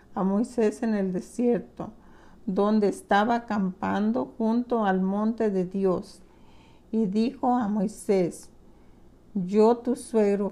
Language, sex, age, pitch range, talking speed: Spanish, female, 50-69, 200-230 Hz, 115 wpm